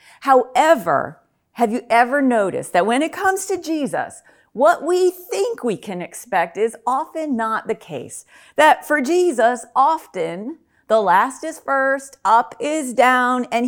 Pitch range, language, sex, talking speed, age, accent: 220-285 Hz, English, female, 150 wpm, 40-59, American